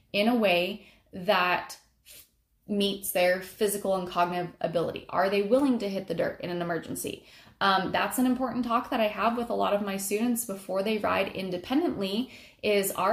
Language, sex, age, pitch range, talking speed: English, female, 20-39, 195-240 Hz, 185 wpm